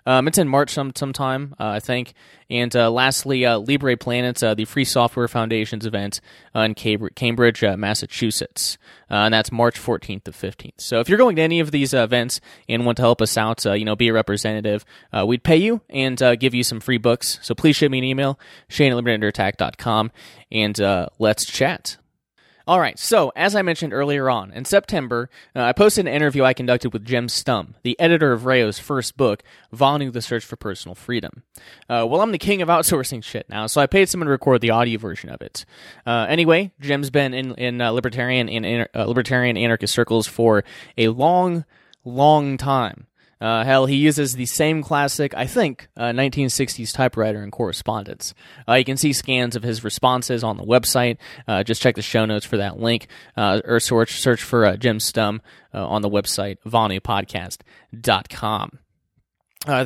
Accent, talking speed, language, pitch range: American, 195 wpm, English, 110-140 Hz